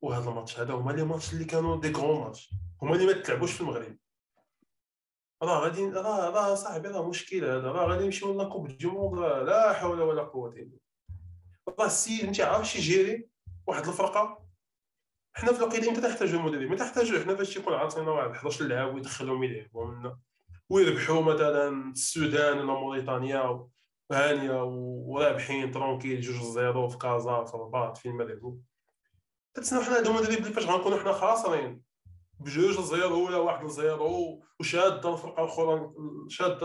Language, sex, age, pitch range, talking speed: Arabic, male, 20-39, 130-190 Hz, 120 wpm